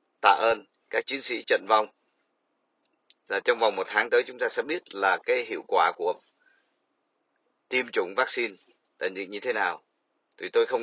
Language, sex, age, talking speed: Vietnamese, male, 30-49, 185 wpm